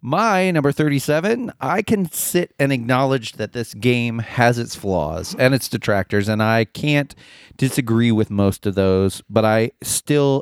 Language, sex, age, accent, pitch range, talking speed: English, male, 30-49, American, 110-145 Hz, 160 wpm